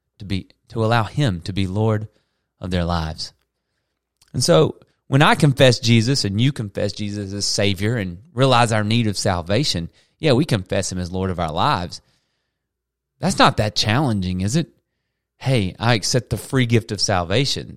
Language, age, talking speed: English, 30-49, 175 wpm